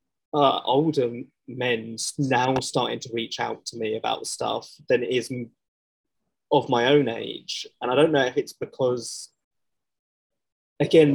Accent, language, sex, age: British, English, male, 20-39